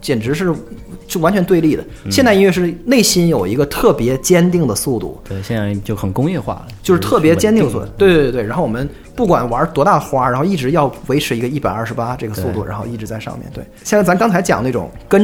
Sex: male